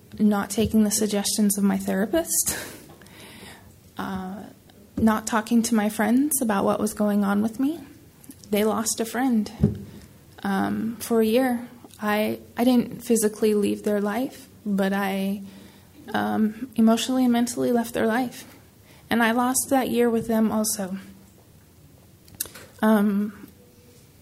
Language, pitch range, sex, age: English, 195-230 Hz, female, 20-39